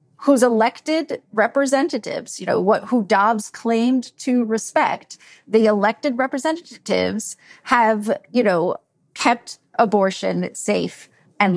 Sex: female